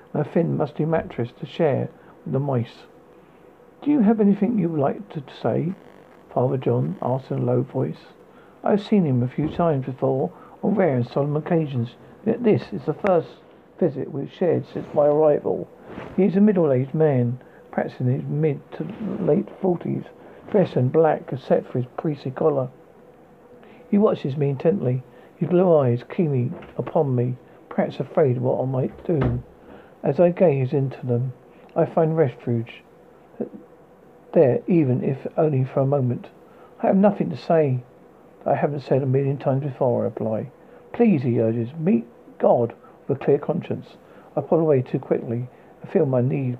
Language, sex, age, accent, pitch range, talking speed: English, male, 50-69, British, 130-175 Hz, 175 wpm